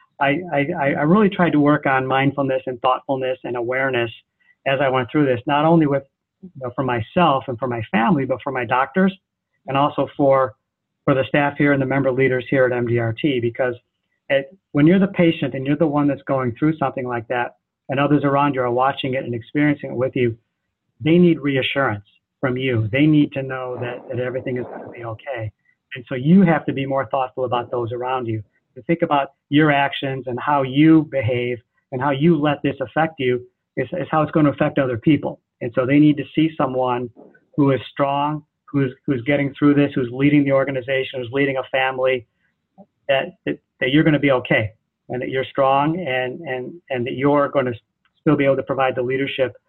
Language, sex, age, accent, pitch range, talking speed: English, male, 40-59, American, 130-145 Hz, 215 wpm